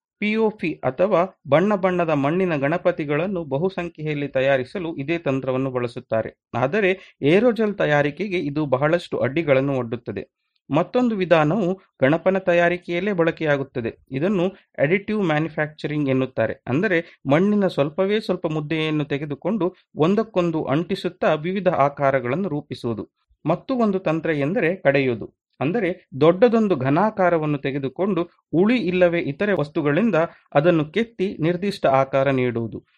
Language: Kannada